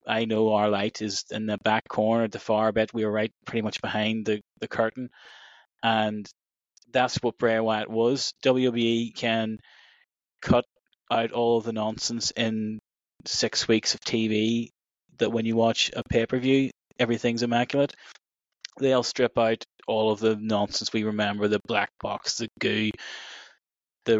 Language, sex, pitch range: English, male, 110-120 Hz